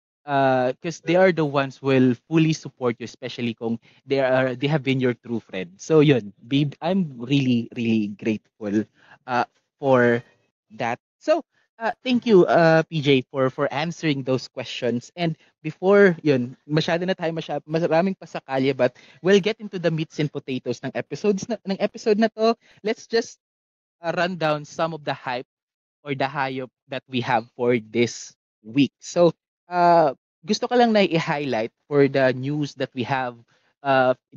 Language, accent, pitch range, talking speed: Filipino, native, 130-165 Hz, 170 wpm